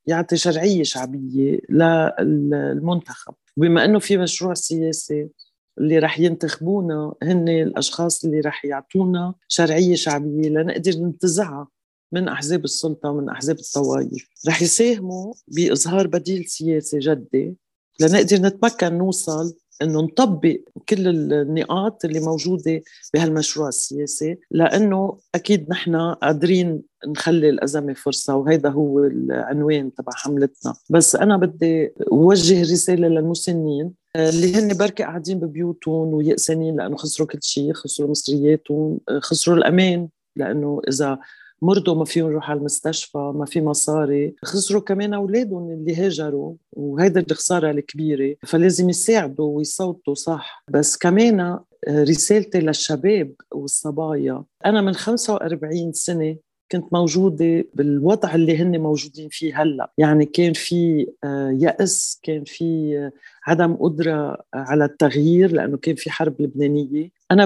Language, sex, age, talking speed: Arabic, female, 40-59, 115 wpm